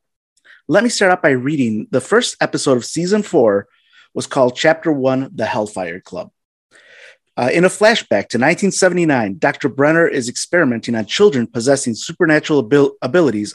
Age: 30-49